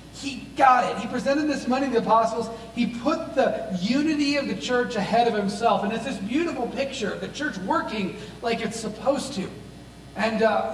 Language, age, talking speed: English, 30-49, 195 wpm